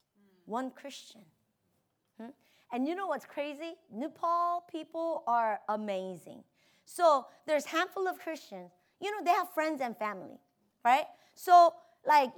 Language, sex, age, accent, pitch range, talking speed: English, female, 30-49, American, 245-395 Hz, 125 wpm